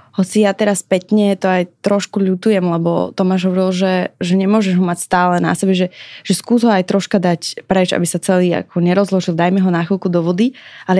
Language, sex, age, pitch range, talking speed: Slovak, female, 20-39, 170-190 Hz, 215 wpm